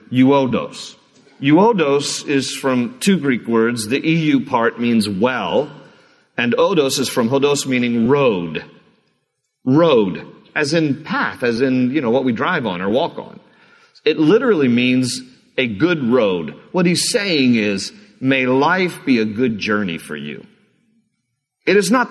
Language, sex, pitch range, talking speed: English, male, 125-185 Hz, 150 wpm